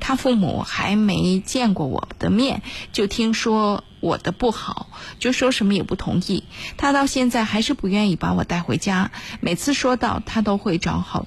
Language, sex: Chinese, female